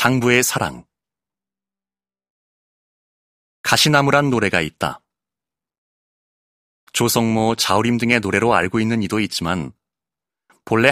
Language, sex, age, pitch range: Korean, male, 30-49, 85-125 Hz